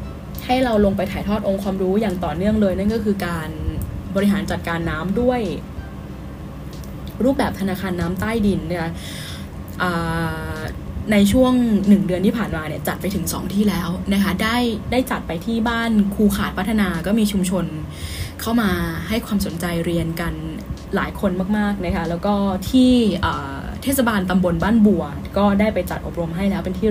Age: 10-29